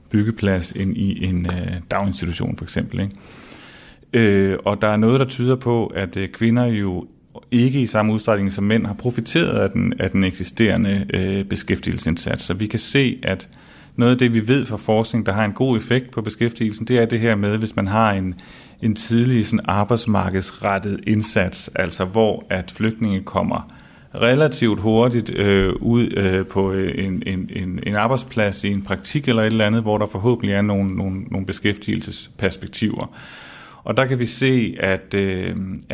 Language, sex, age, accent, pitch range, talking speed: Danish, male, 30-49, native, 100-115 Hz, 170 wpm